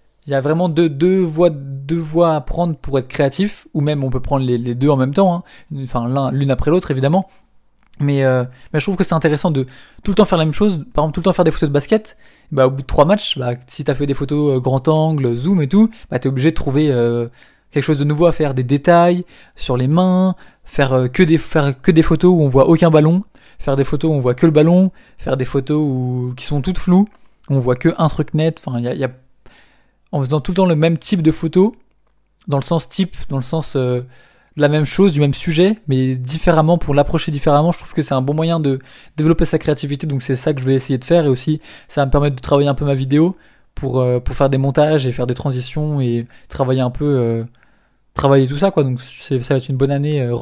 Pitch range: 130-165 Hz